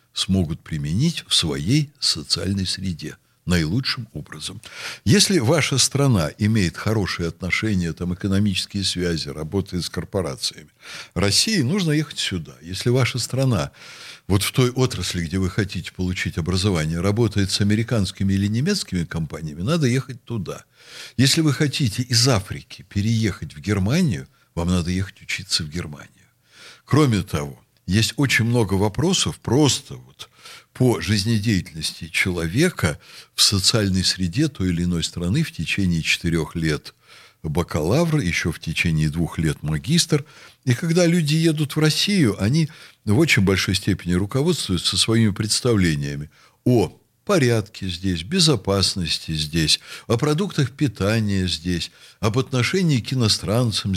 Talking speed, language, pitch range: 125 wpm, Russian, 90-135 Hz